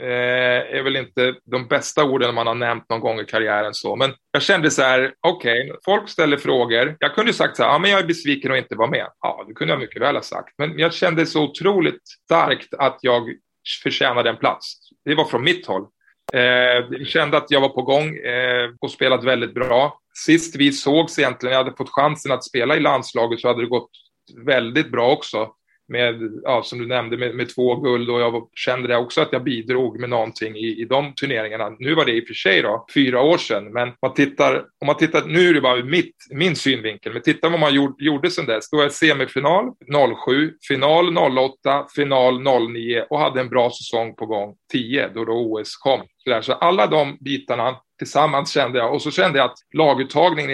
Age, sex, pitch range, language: 20-39, male, 120-145 Hz, English